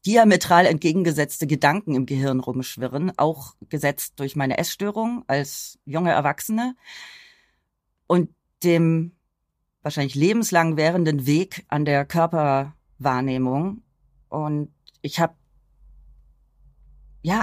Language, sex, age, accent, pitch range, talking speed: German, female, 30-49, German, 155-215 Hz, 95 wpm